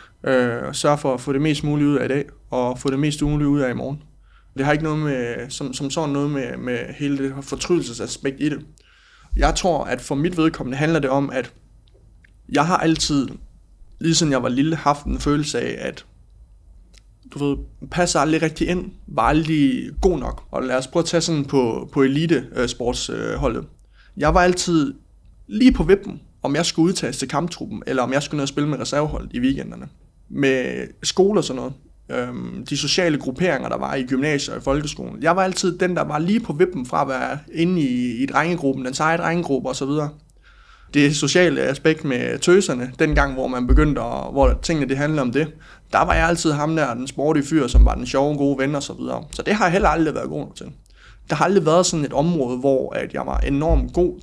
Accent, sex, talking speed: native, male, 215 wpm